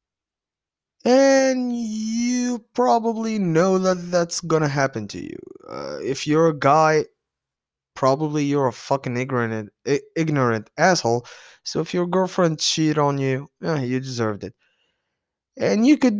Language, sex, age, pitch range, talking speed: English, male, 20-39, 125-190 Hz, 135 wpm